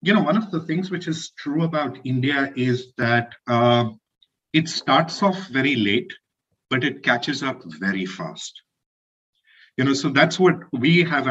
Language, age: English, 50-69